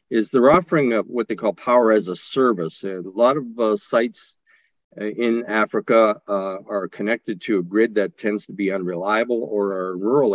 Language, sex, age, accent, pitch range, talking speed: English, male, 50-69, American, 95-115 Hz, 190 wpm